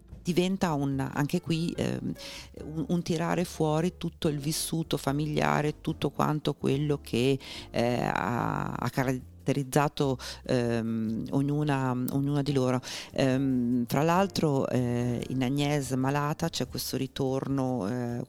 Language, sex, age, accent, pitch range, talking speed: Italian, female, 40-59, native, 120-145 Hz, 115 wpm